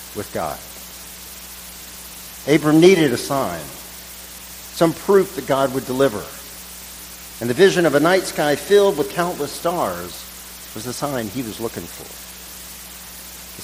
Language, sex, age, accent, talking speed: English, male, 50-69, American, 135 wpm